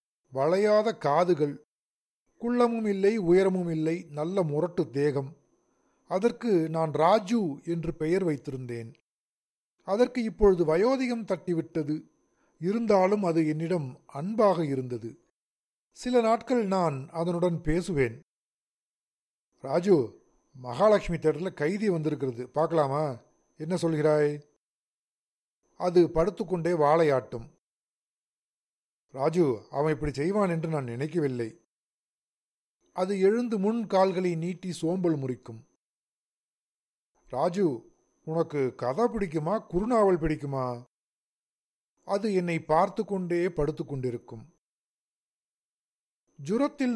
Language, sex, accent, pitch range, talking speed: Tamil, male, native, 150-200 Hz, 85 wpm